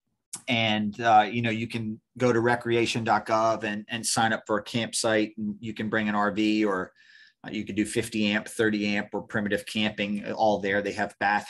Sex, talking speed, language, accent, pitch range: male, 205 wpm, English, American, 105-120 Hz